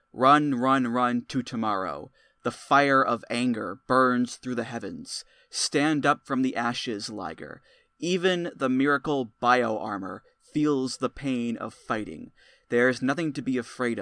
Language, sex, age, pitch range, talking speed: English, male, 20-39, 125-180 Hz, 140 wpm